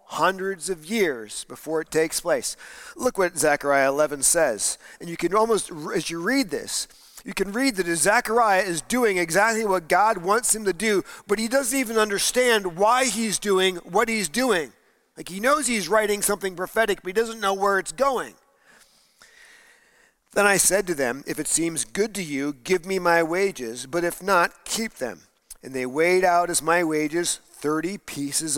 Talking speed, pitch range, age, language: 185 wpm, 155-215 Hz, 40-59, English